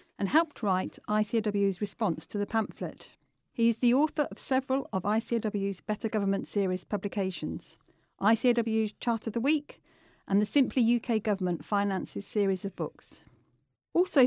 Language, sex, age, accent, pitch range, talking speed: English, female, 40-59, British, 195-235 Hz, 145 wpm